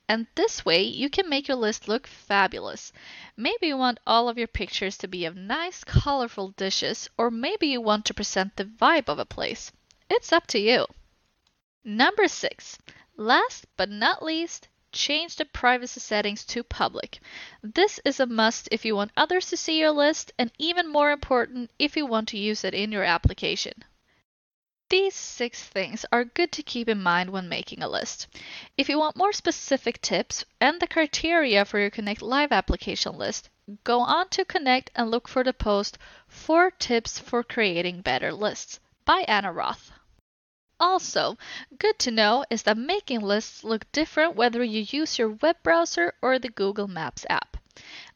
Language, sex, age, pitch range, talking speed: English, female, 10-29, 215-320 Hz, 175 wpm